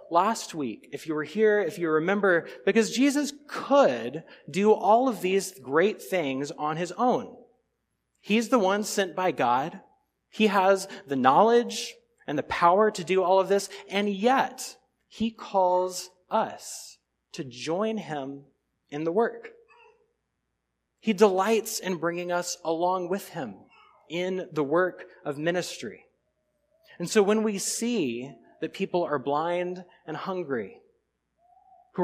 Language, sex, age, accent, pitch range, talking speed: English, male, 30-49, American, 170-225 Hz, 140 wpm